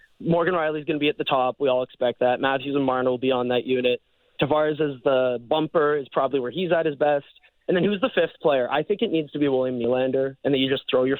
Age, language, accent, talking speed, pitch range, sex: 20-39, English, American, 275 wpm, 130-155 Hz, male